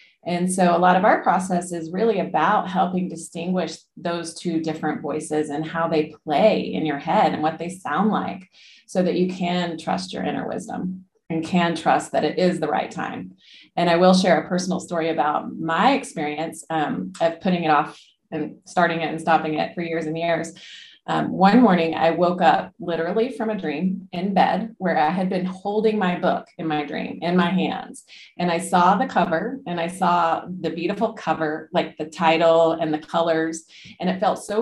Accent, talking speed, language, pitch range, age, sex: American, 200 wpm, English, 160-185 Hz, 30-49, female